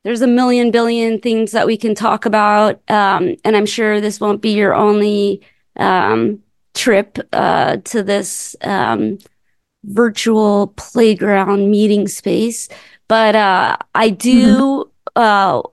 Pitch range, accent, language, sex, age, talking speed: 205-235 Hz, American, English, female, 30-49, 130 wpm